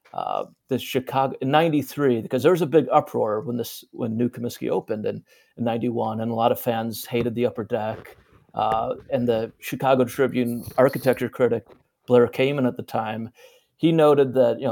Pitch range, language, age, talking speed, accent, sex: 115-135 Hz, English, 40-59, 175 wpm, American, male